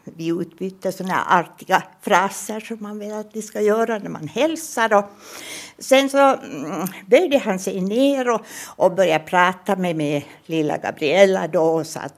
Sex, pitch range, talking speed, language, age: female, 165-245 Hz, 160 wpm, Swedish, 60-79